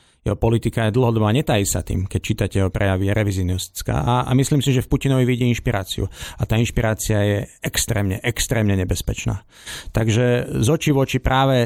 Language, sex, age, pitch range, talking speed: Slovak, male, 50-69, 100-120 Hz, 175 wpm